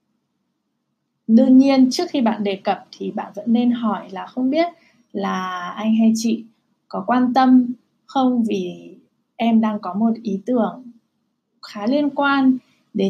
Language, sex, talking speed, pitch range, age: Vietnamese, female, 155 wpm, 200-245 Hz, 20-39